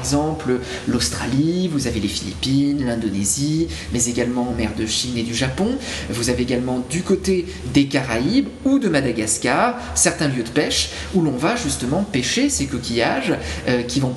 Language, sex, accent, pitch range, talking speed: French, male, French, 120-165 Hz, 175 wpm